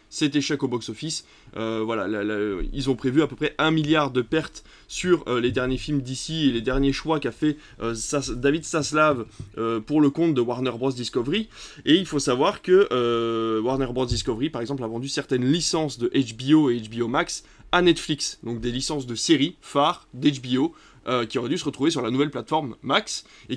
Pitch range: 120-155 Hz